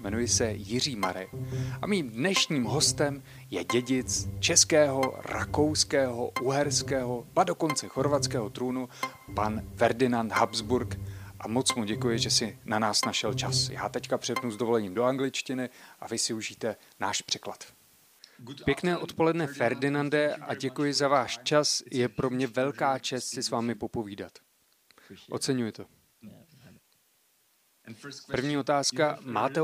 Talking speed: 130 wpm